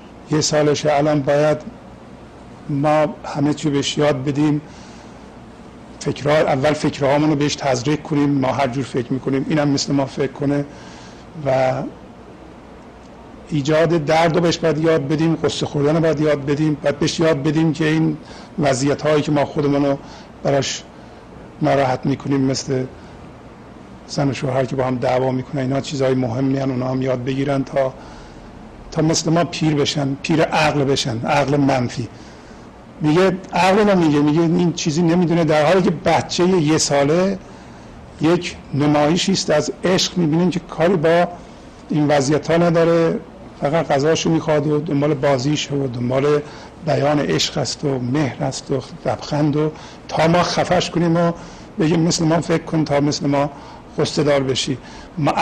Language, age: Persian, 50-69